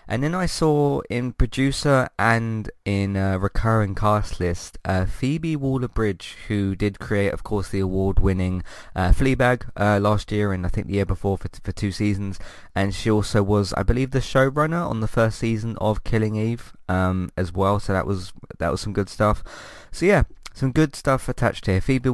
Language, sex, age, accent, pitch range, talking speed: English, male, 20-39, British, 95-115 Hz, 195 wpm